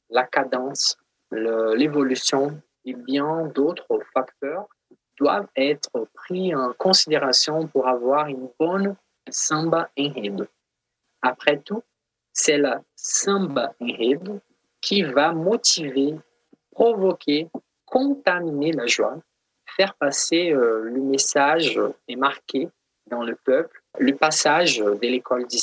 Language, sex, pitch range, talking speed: French, male, 130-180 Hz, 110 wpm